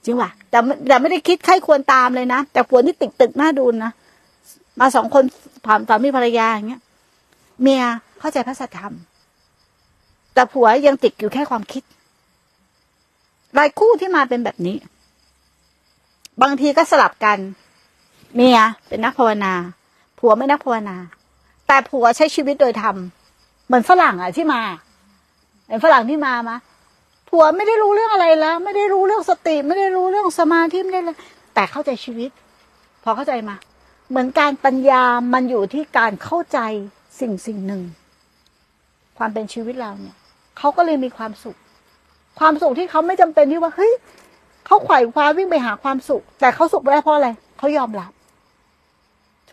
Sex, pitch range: female, 220-310 Hz